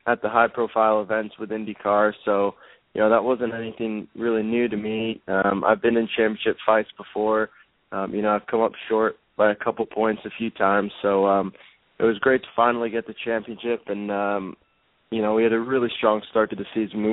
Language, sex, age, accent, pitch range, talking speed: English, male, 20-39, American, 105-115 Hz, 215 wpm